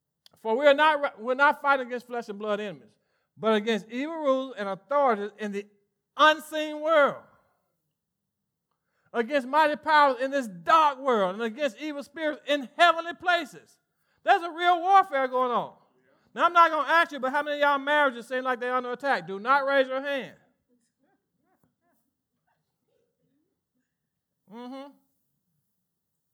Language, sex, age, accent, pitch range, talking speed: English, male, 50-69, American, 180-280 Hz, 145 wpm